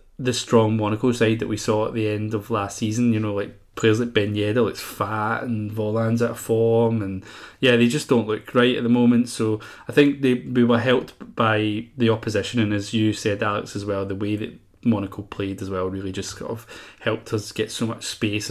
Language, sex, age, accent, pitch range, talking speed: English, male, 20-39, British, 105-120 Hz, 235 wpm